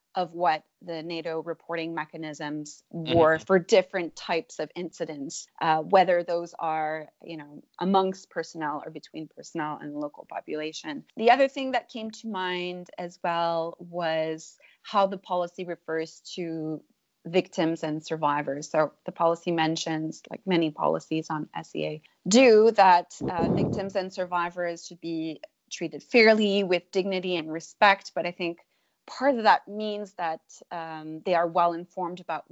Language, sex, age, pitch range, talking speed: English, female, 30-49, 160-180 Hz, 145 wpm